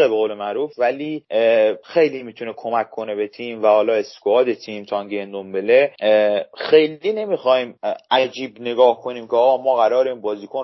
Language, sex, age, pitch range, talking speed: Persian, male, 30-49, 115-155 Hz, 145 wpm